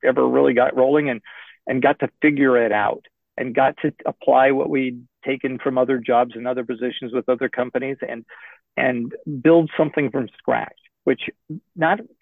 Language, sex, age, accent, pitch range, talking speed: English, male, 50-69, American, 125-150 Hz, 170 wpm